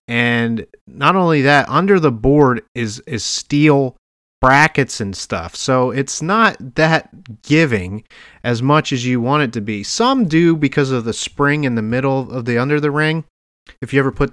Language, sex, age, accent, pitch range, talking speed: English, male, 30-49, American, 120-150 Hz, 185 wpm